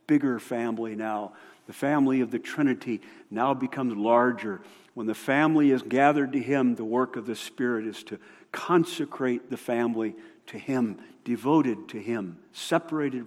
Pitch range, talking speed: 110-145 Hz, 155 wpm